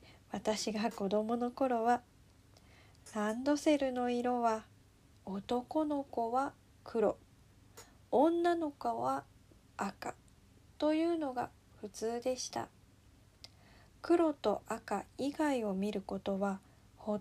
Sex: female